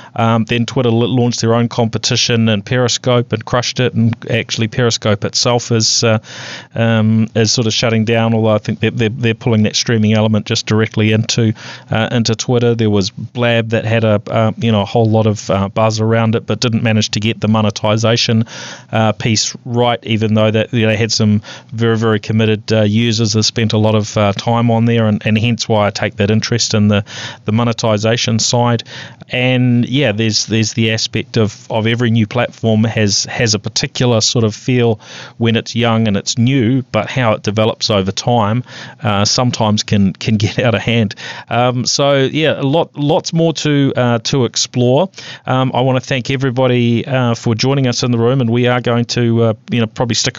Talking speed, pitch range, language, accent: 210 wpm, 110-125 Hz, English, Australian